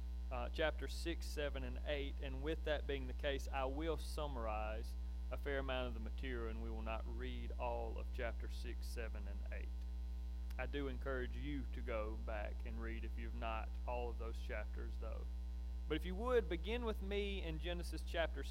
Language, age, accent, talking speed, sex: English, 30-49, American, 195 wpm, male